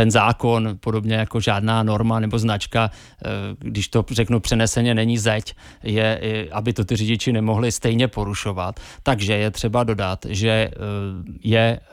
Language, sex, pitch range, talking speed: Czech, male, 105-120 Hz, 140 wpm